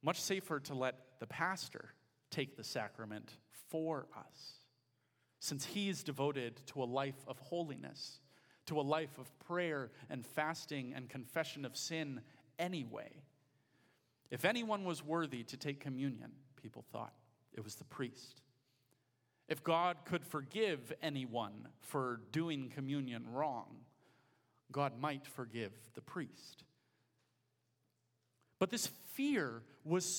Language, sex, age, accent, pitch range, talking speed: English, male, 40-59, American, 125-160 Hz, 125 wpm